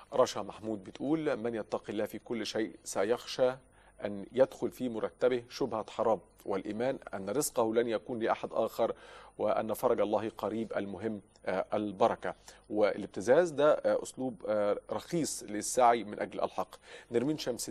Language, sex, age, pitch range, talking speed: Arabic, male, 40-59, 105-130 Hz, 130 wpm